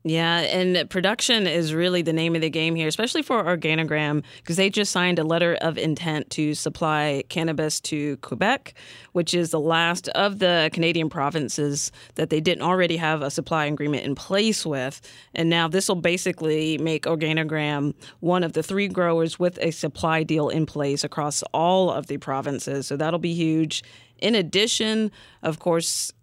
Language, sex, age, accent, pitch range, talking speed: English, female, 30-49, American, 150-180 Hz, 175 wpm